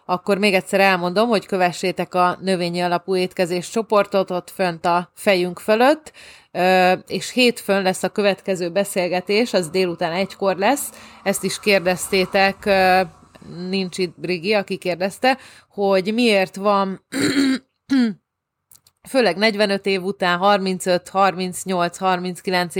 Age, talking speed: 30-49, 110 wpm